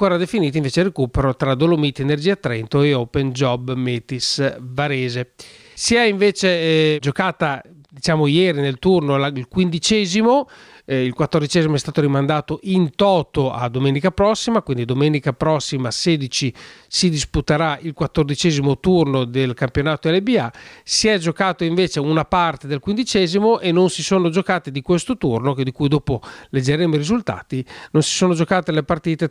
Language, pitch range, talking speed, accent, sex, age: Italian, 140-185 Hz, 155 wpm, native, male, 40-59